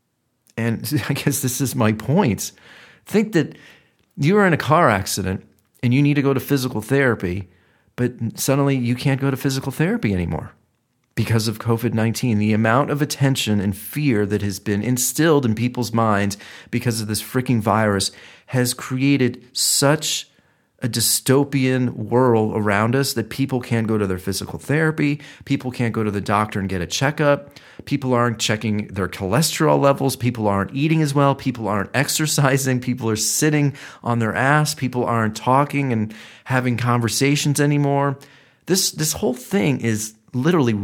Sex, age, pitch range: male, 40-59, 110-140 Hz